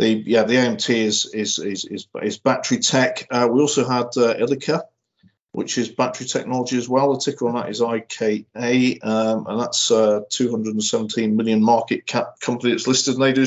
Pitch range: 110-130 Hz